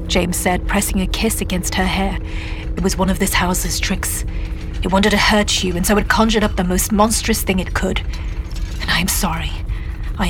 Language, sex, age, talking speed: English, female, 40-59, 210 wpm